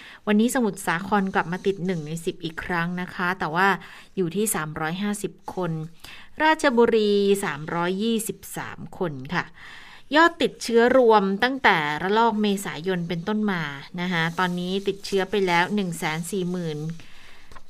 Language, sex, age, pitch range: Thai, female, 20-39, 170-210 Hz